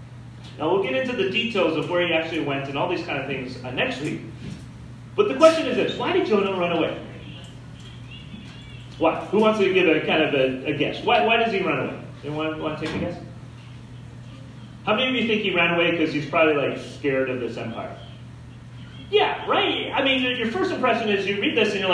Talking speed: 225 wpm